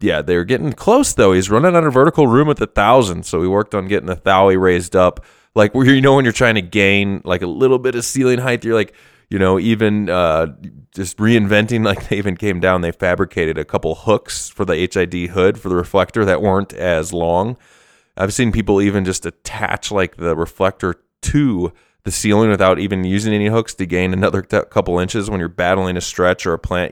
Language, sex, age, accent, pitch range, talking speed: English, male, 20-39, American, 90-110 Hz, 225 wpm